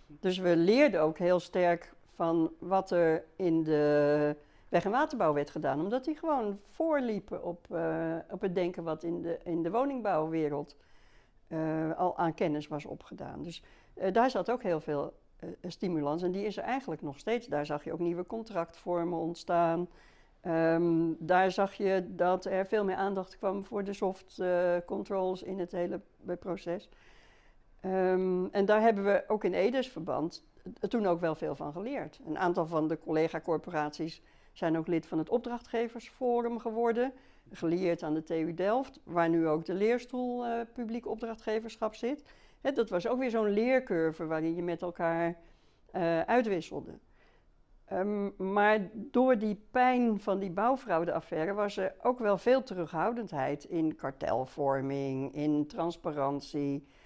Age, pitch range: 60-79, 165-215 Hz